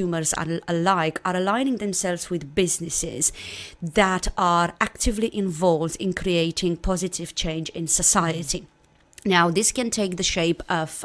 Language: English